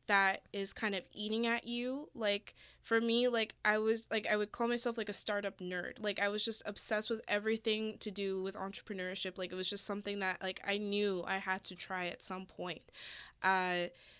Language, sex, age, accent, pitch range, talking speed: English, female, 20-39, American, 185-215 Hz, 210 wpm